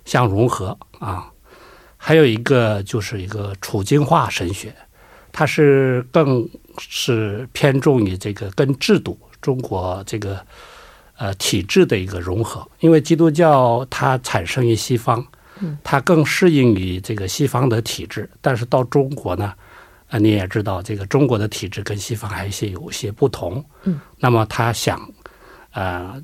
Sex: male